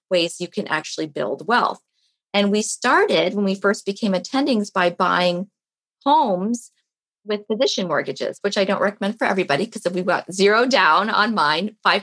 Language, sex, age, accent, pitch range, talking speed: English, female, 30-49, American, 180-215 Hz, 165 wpm